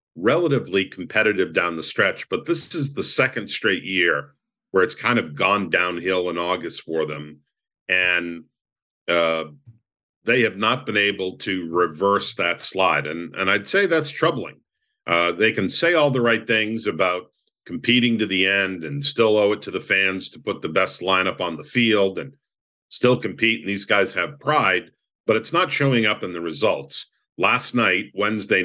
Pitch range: 90-120 Hz